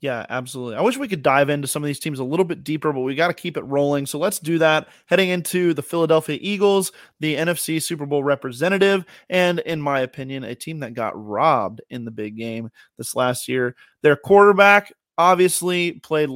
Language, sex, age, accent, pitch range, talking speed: English, male, 30-49, American, 135-165 Hz, 210 wpm